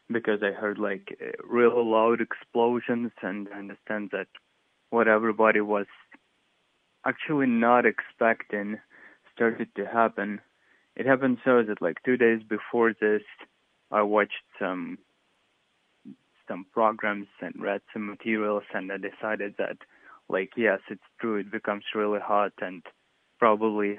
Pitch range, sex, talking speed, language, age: 100-115 Hz, male, 130 wpm, English, 20-39